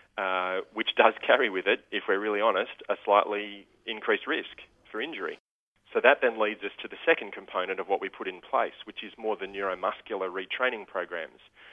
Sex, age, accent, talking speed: male, 30-49, Australian, 195 wpm